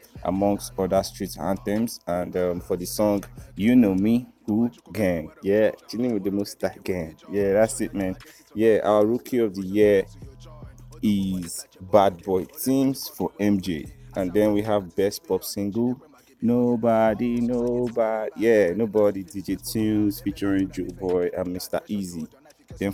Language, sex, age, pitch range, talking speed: English, male, 30-49, 95-115 Hz, 145 wpm